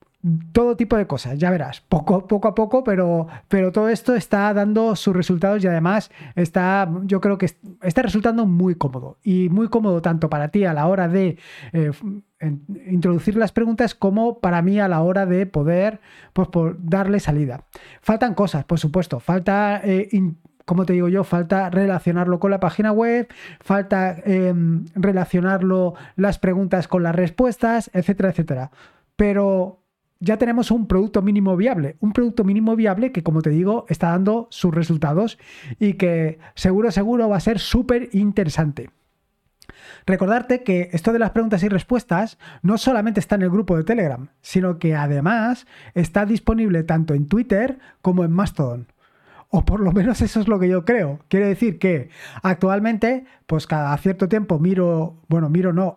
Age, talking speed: 20-39, 170 wpm